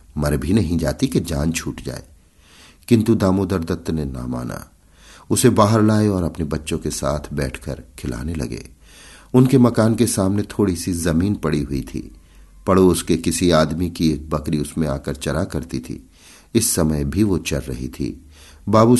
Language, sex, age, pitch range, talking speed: Hindi, male, 50-69, 75-100 Hz, 175 wpm